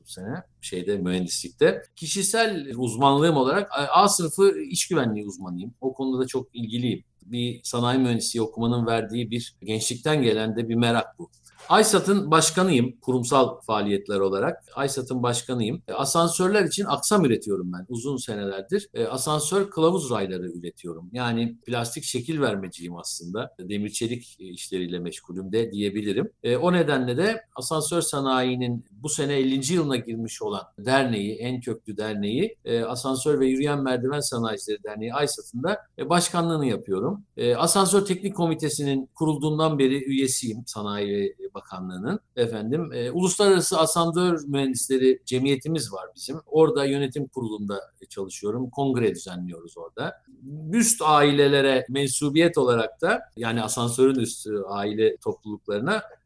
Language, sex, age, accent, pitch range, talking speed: Turkish, male, 50-69, native, 110-155 Hz, 120 wpm